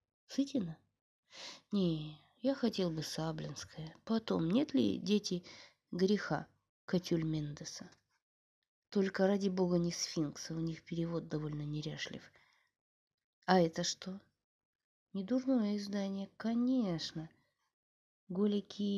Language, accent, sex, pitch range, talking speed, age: Russian, native, female, 165-210 Hz, 95 wpm, 20-39